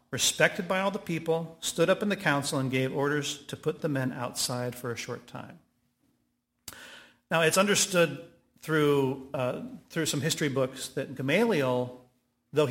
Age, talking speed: 40-59, 160 wpm